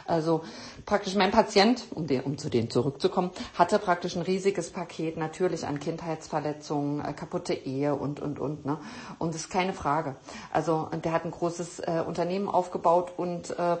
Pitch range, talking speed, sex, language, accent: 155-200 Hz, 175 wpm, female, German, German